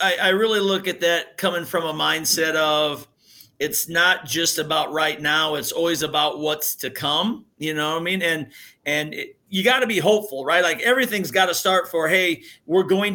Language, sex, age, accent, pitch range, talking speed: English, male, 40-59, American, 160-190 Hz, 205 wpm